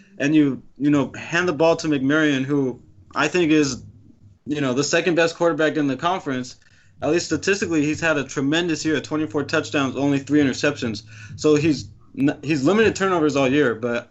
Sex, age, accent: male, 20-39, American